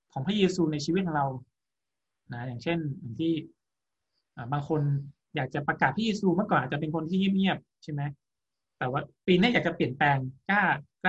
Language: Thai